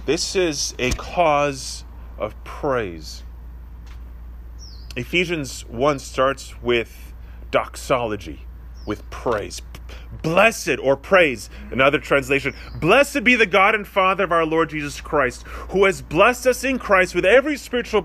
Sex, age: male, 30-49